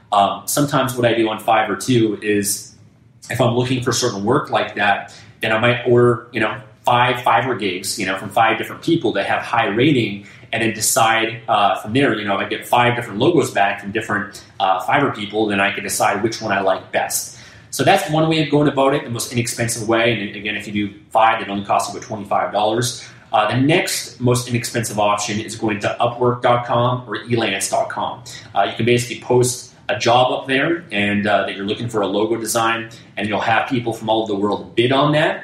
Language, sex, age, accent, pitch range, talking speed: English, male, 30-49, American, 100-120 Hz, 225 wpm